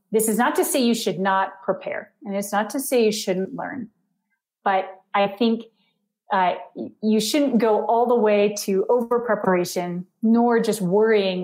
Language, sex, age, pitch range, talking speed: English, female, 30-49, 190-240 Hz, 170 wpm